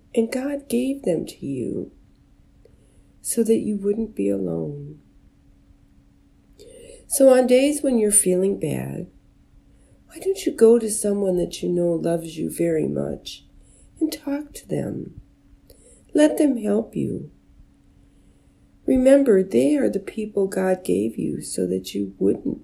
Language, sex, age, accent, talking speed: English, female, 60-79, American, 140 wpm